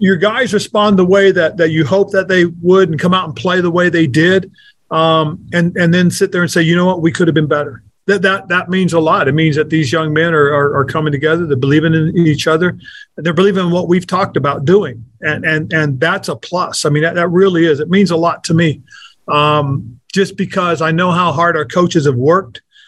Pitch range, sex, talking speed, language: 150-185 Hz, male, 250 wpm, English